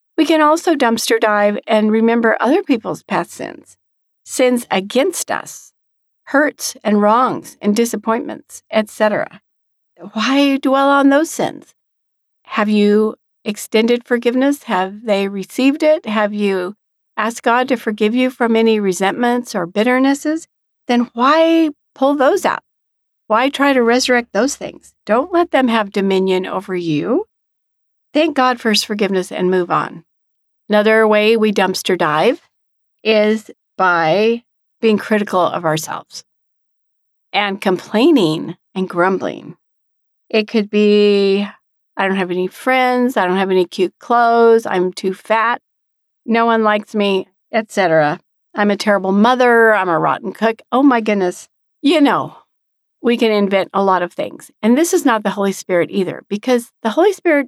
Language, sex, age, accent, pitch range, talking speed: English, female, 50-69, American, 195-255 Hz, 145 wpm